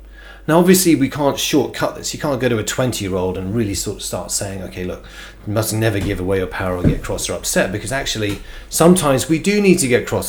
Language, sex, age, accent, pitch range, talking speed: English, male, 30-49, British, 95-125 Hz, 250 wpm